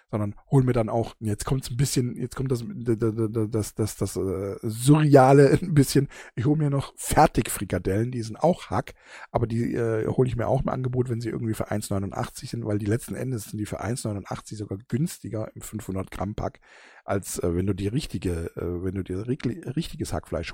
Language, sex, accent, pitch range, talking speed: German, male, German, 100-125 Hz, 215 wpm